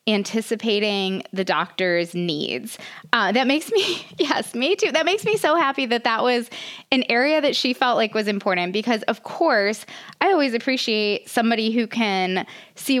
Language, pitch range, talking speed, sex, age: English, 180-245 Hz, 170 wpm, female, 20-39